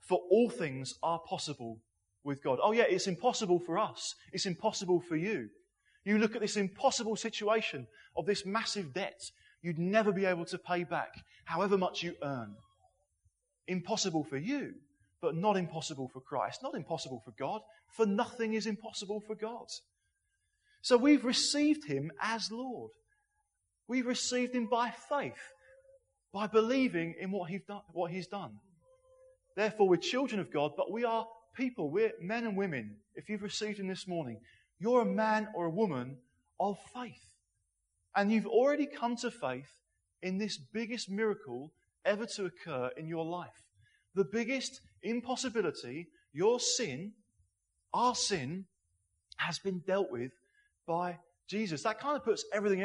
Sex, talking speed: male, 155 wpm